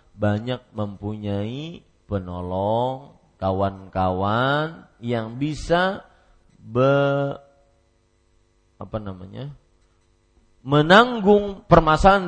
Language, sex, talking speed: Malay, male, 55 wpm